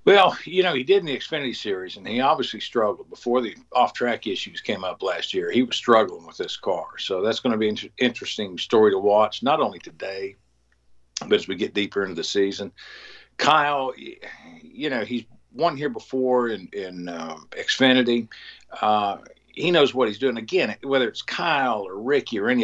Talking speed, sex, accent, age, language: 195 wpm, male, American, 60-79, English